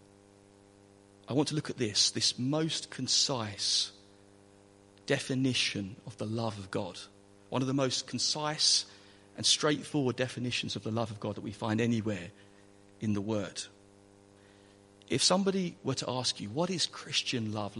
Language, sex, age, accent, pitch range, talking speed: English, male, 40-59, British, 100-120 Hz, 150 wpm